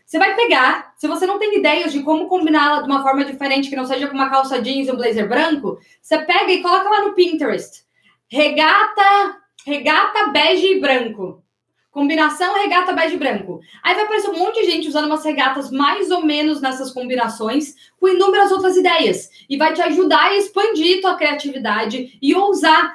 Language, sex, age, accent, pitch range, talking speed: Portuguese, female, 20-39, Brazilian, 265-360 Hz, 190 wpm